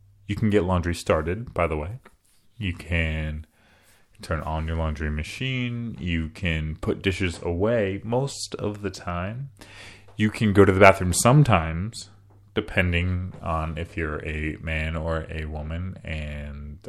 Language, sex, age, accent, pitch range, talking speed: English, male, 30-49, American, 85-100 Hz, 145 wpm